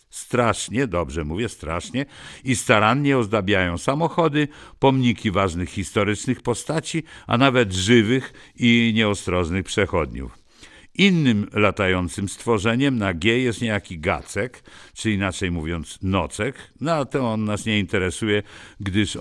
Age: 50-69